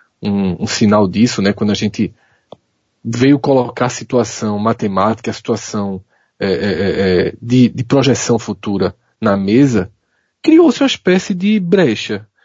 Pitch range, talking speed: 115-180 Hz, 125 wpm